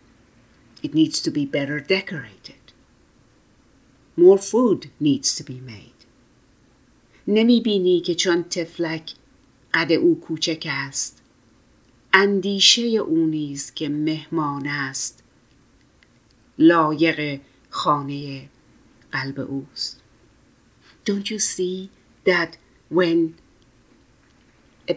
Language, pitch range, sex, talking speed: English, 140-165 Hz, female, 80 wpm